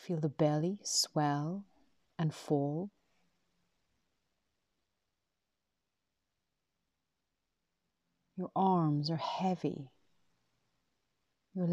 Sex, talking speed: female, 55 wpm